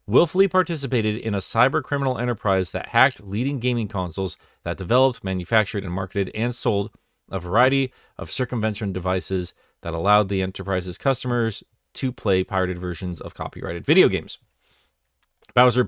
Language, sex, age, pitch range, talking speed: English, male, 30-49, 95-125 Hz, 140 wpm